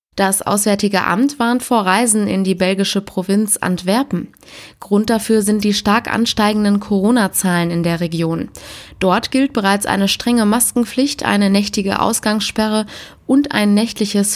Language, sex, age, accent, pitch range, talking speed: German, female, 20-39, German, 190-225 Hz, 140 wpm